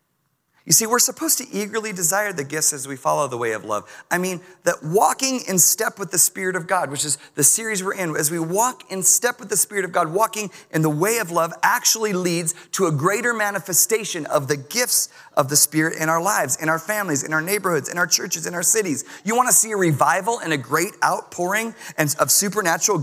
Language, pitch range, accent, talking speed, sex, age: English, 155-215 Hz, American, 230 wpm, male, 30-49